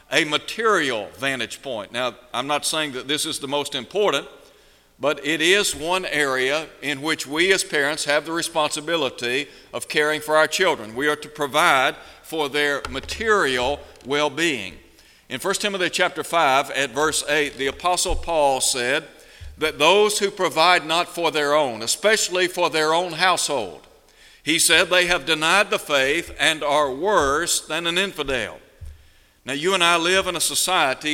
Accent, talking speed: American, 165 wpm